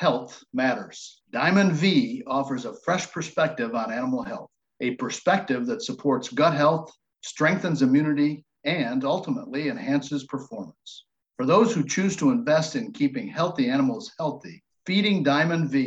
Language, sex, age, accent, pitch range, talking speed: English, male, 50-69, American, 130-165 Hz, 140 wpm